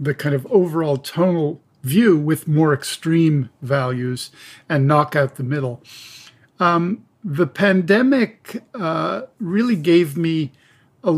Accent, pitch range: American, 140-175 Hz